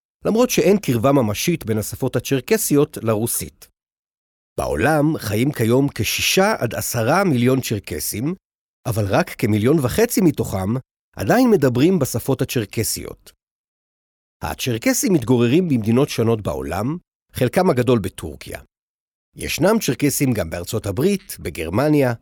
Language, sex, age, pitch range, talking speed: Hebrew, male, 50-69, 110-160 Hz, 105 wpm